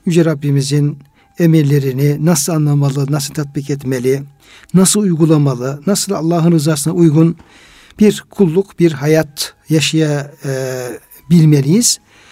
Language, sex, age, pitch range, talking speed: Turkish, male, 60-79, 145-190 Hz, 95 wpm